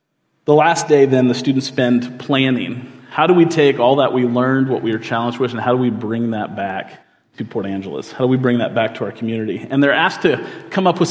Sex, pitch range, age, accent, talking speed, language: male, 120-150 Hz, 30-49, American, 255 wpm, English